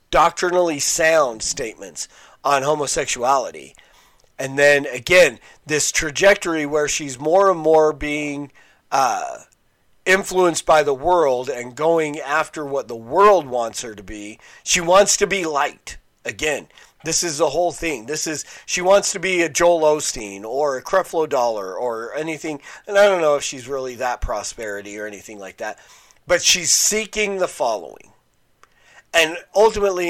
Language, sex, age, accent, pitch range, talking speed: English, male, 40-59, American, 145-175 Hz, 155 wpm